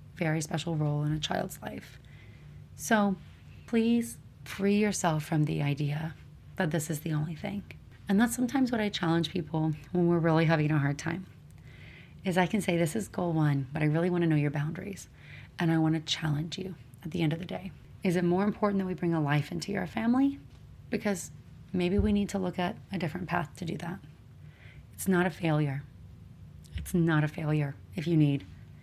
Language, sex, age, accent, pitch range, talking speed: English, female, 30-49, American, 145-180 Hz, 200 wpm